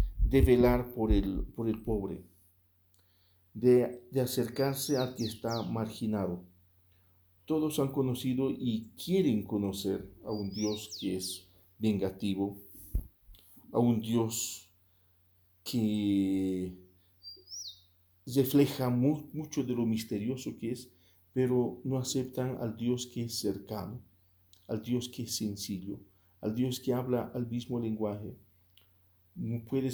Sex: male